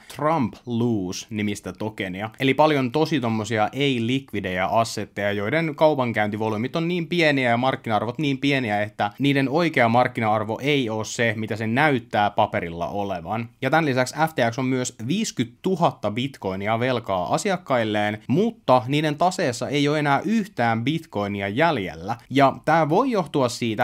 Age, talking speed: 30-49, 135 wpm